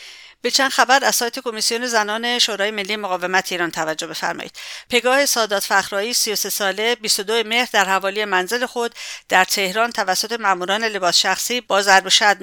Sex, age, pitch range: female, 50-69, 190-230 Hz